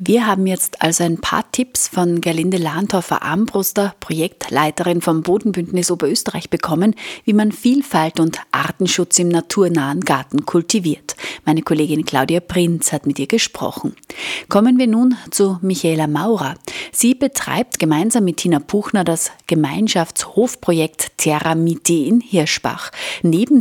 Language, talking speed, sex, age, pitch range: German, 130 wpm, female, 30-49, 165-220 Hz